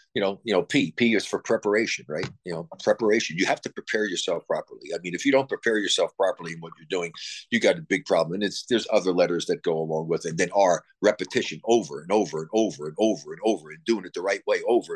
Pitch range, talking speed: 110-155 Hz, 265 wpm